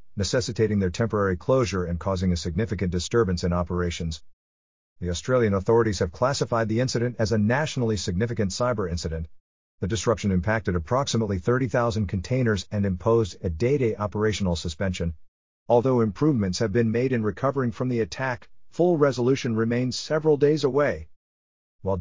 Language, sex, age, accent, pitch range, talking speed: English, male, 50-69, American, 90-120 Hz, 145 wpm